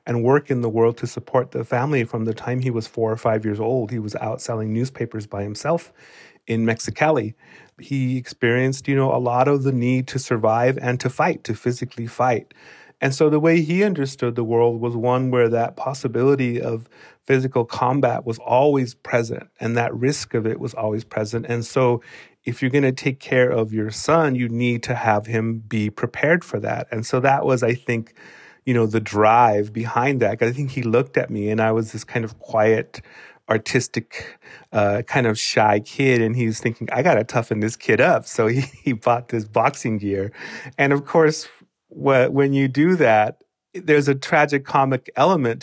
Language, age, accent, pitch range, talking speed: English, 30-49, American, 115-135 Hz, 205 wpm